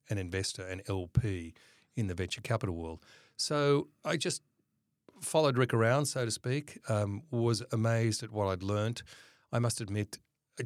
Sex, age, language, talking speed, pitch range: male, 40-59, English, 165 wpm, 90-120 Hz